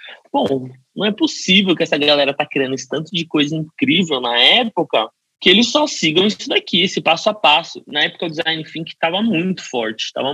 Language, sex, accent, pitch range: Portuguese, male, Brazilian, 150-225 Hz